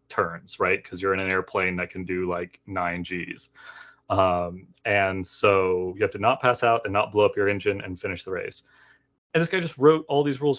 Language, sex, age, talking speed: English, male, 30-49, 225 wpm